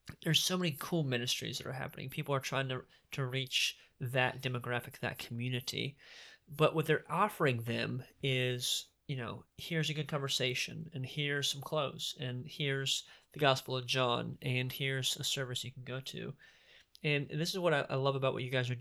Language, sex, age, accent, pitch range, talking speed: English, male, 30-49, American, 130-160 Hz, 195 wpm